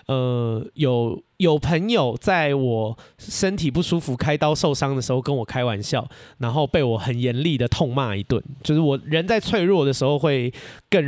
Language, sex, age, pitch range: Chinese, male, 20-39, 125-165 Hz